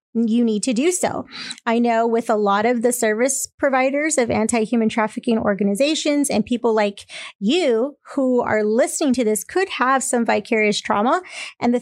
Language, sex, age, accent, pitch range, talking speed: English, female, 30-49, American, 220-260 Hz, 175 wpm